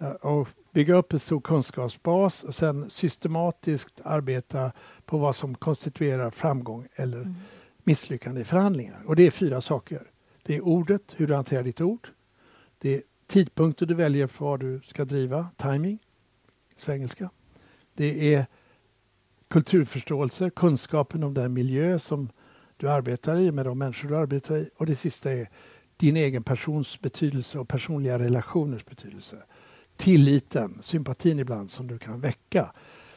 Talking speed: 145 wpm